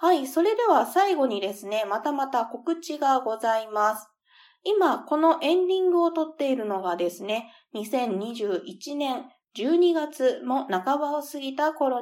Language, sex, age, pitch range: Japanese, female, 20-39, 220-295 Hz